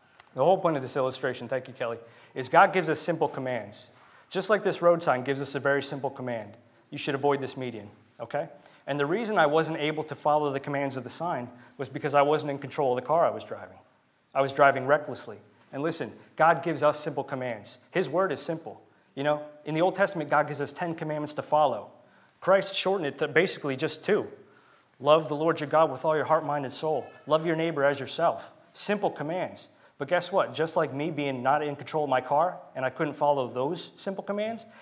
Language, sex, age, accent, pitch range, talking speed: English, male, 30-49, American, 130-155 Hz, 230 wpm